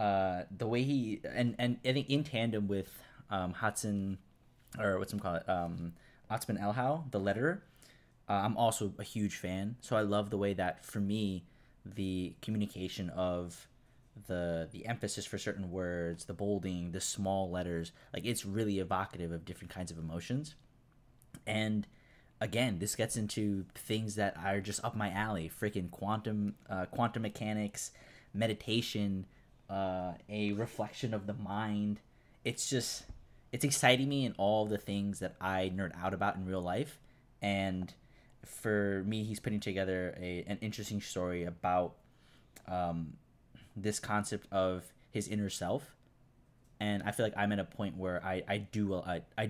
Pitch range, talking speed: 90-110 Hz, 160 wpm